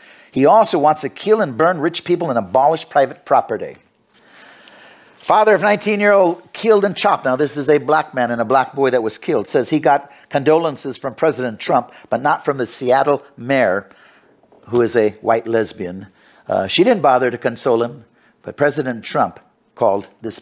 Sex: male